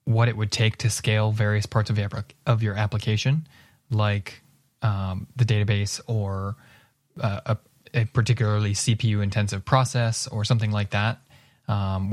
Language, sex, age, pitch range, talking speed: English, male, 20-39, 105-125 Hz, 135 wpm